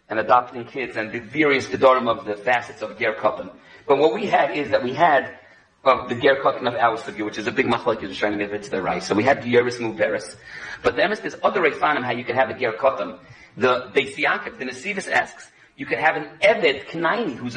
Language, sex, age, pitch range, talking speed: English, male, 40-59, 125-165 Hz, 255 wpm